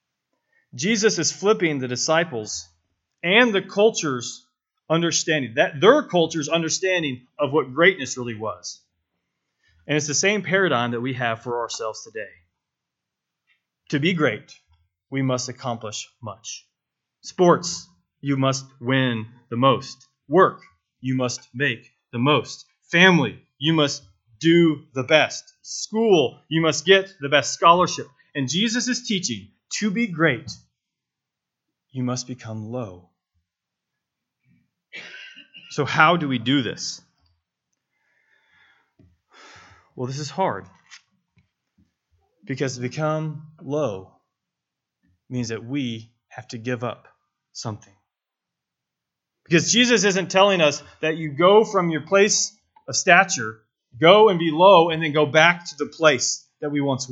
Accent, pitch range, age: American, 125-175 Hz, 30-49